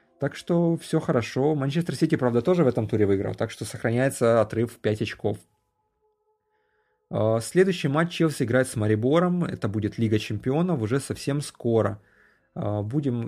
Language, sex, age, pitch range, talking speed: Russian, male, 30-49, 110-150 Hz, 150 wpm